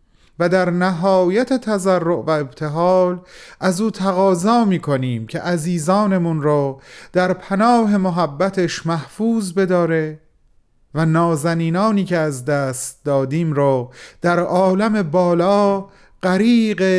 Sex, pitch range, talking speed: male, 155-200 Hz, 100 wpm